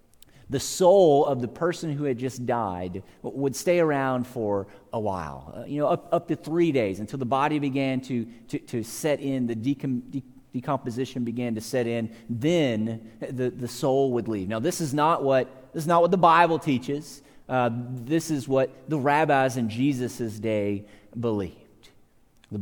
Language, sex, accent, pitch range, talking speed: English, male, American, 115-145 Hz, 180 wpm